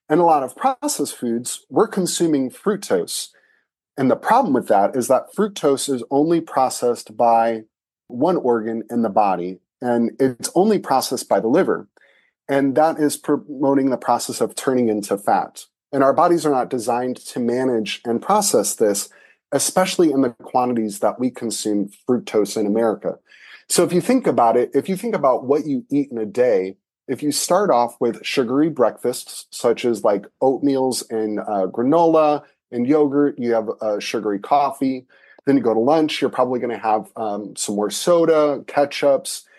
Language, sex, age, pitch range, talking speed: English, male, 30-49, 115-150 Hz, 175 wpm